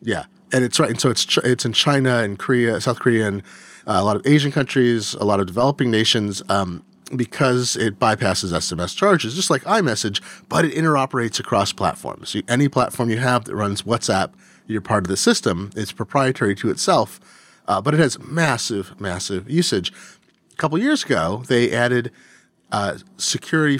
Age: 30-49